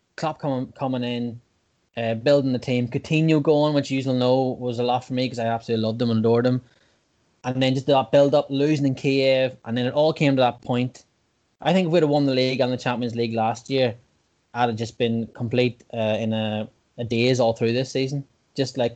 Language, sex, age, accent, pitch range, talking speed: English, male, 20-39, Irish, 115-135 Hz, 230 wpm